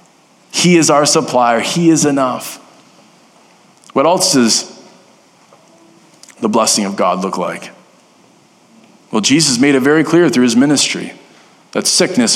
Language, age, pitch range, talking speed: English, 20-39, 130-185 Hz, 130 wpm